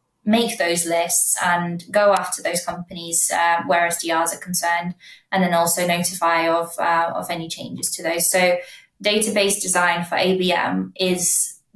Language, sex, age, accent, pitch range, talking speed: English, female, 20-39, British, 170-190 Hz, 155 wpm